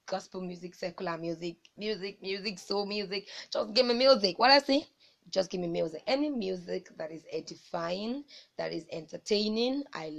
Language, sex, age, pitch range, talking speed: English, female, 20-39, 165-190 Hz, 165 wpm